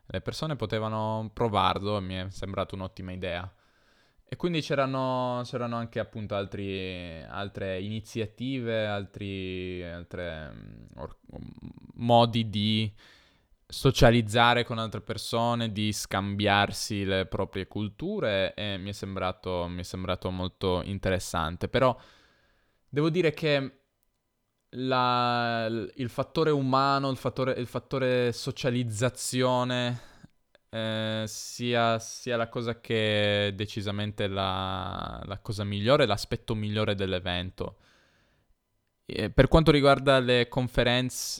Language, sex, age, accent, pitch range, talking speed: Italian, male, 10-29, native, 100-125 Hz, 110 wpm